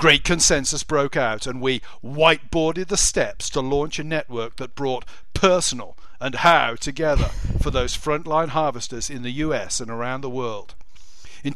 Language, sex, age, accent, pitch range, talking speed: English, male, 50-69, British, 125-155 Hz, 160 wpm